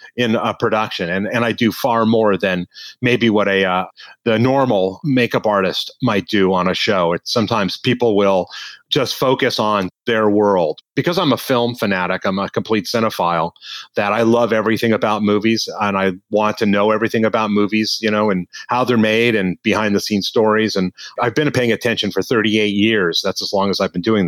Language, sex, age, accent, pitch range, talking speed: English, male, 30-49, American, 105-125 Hz, 200 wpm